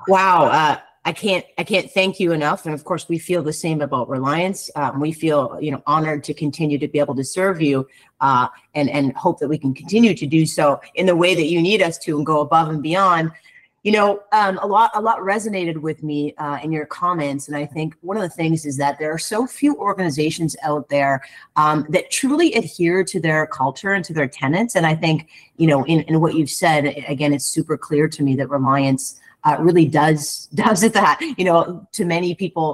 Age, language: 30-49, English